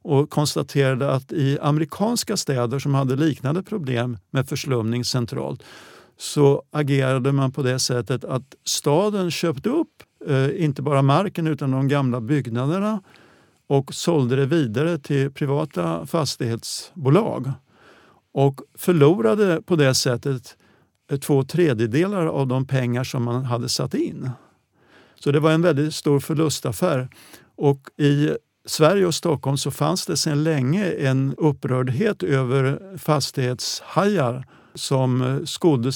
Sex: male